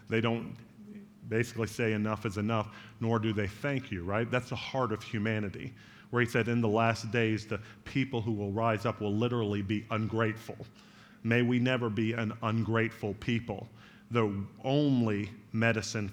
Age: 40-59